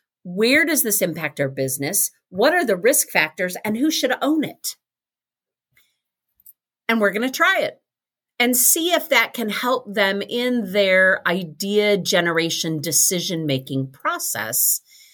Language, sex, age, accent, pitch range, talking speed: English, female, 50-69, American, 185-275 Hz, 140 wpm